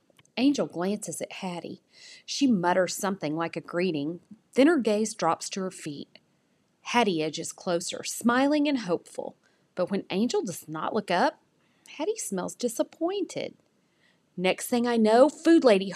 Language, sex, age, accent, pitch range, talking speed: English, female, 40-59, American, 180-270 Hz, 145 wpm